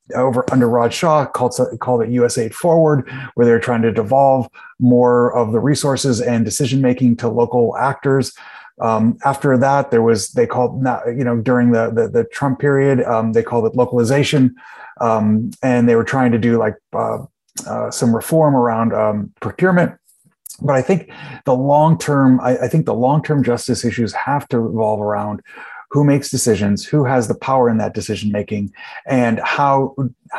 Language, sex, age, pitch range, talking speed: English, male, 30-49, 115-135 Hz, 175 wpm